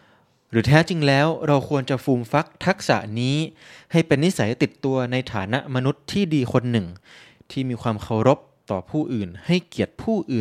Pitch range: 110-145 Hz